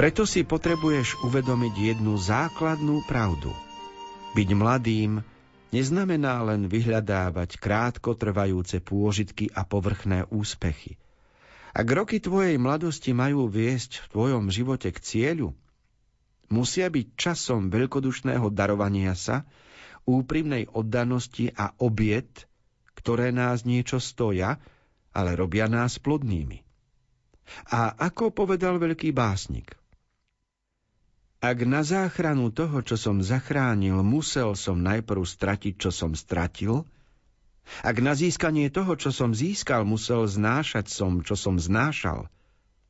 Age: 50-69